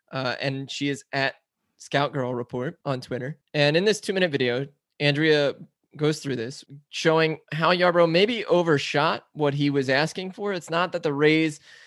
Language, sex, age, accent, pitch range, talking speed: English, male, 20-39, American, 135-155 Hz, 175 wpm